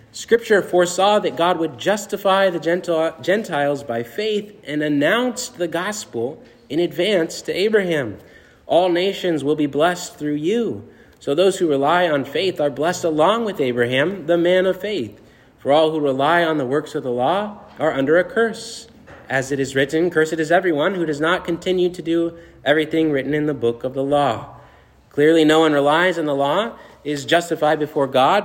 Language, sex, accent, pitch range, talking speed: English, male, American, 145-185 Hz, 180 wpm